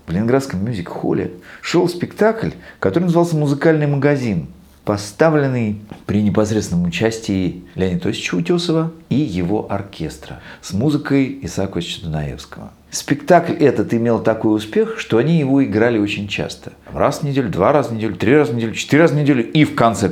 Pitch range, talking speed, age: 85-135 Hz, 150 wpm, 40-59